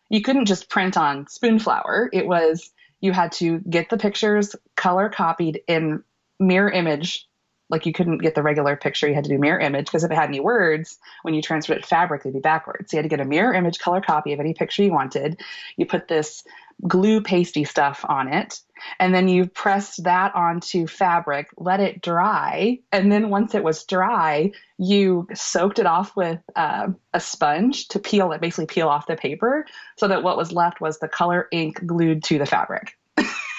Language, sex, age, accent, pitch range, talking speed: English, female, 30-49, American, 155-200 Hz, 200 wpm